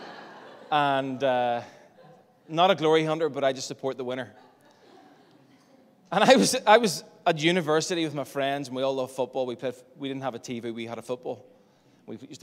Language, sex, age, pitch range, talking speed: English, male, 20-39, 120-150 Hz, 195 wpm